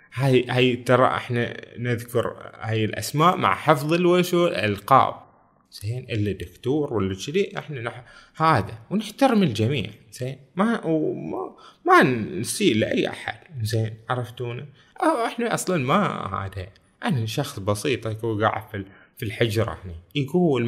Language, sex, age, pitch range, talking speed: Arabic, male, 20-39, 105-155 Hz, 120 wpm